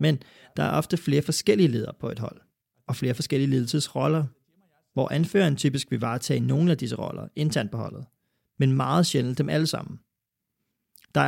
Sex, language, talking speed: male, Danish, 175 wpm